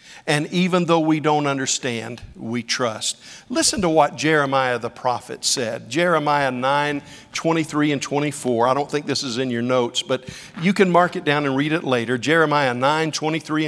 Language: English